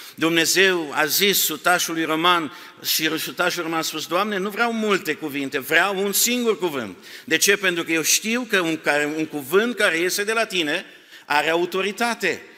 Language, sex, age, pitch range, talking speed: Romanian, male, 50-69, 155-195 Hz, 165 wpm